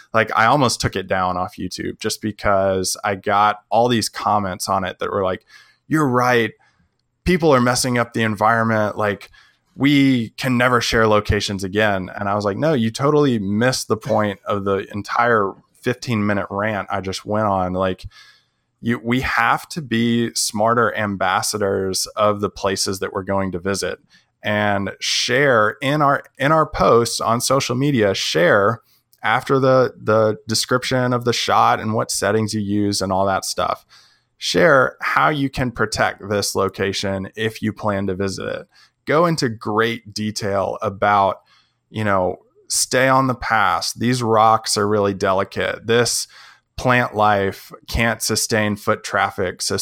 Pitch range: 100-120 Hz